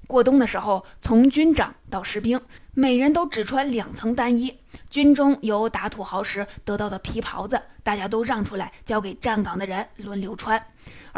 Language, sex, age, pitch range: Chinese, female, 20-39, 210-265 Hz